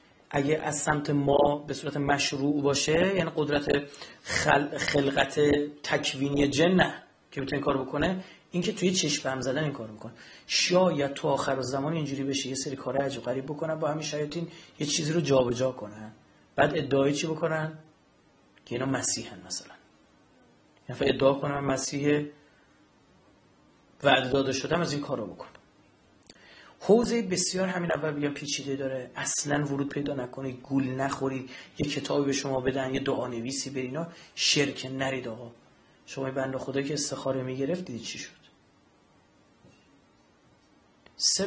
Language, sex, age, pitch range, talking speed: Persian, male, 30-49, 135-155 Hz, 150 wpm